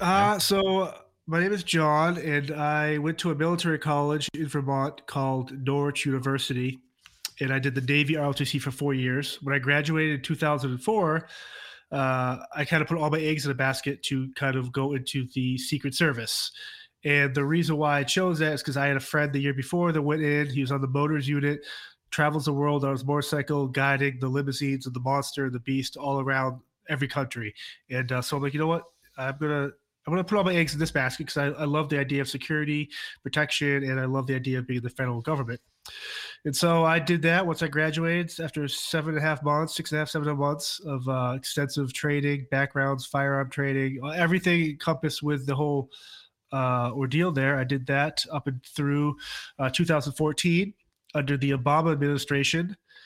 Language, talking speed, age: English, 205 wpm, 30-49